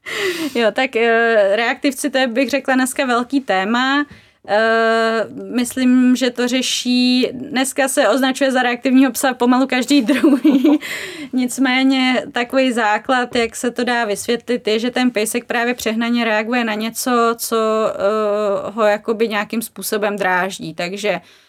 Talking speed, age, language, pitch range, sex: 140 wpm, 20-39, Czech, 215-250 Hz, female